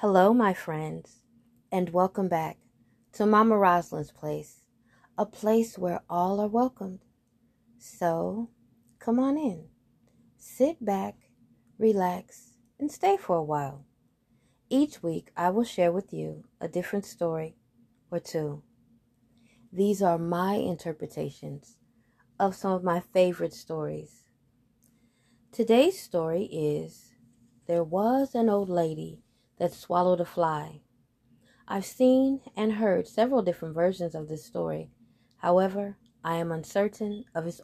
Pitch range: 120-195 Hz